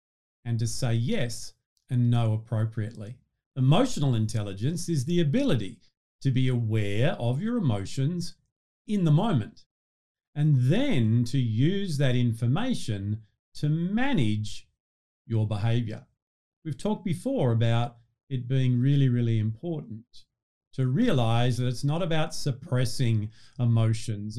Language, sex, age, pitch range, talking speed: English, male, 50-69, 115-145 Hz, 120 wpm